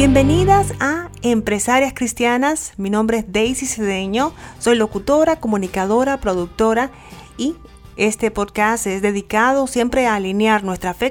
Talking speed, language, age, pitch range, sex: 125 wpm, Spanish, 40-59, 200-270 Hz, female